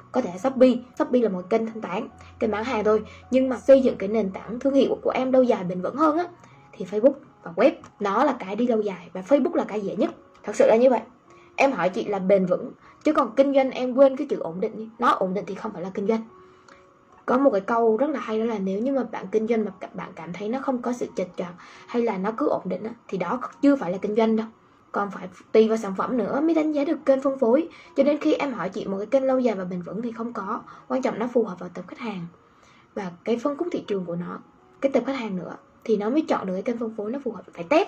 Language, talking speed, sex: Vietnamese, 290 wpm, female